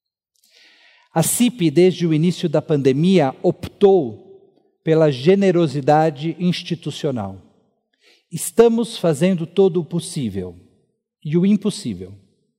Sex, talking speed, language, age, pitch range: male, 90 wpm, Portuguese, 50-69, 150-210 Hz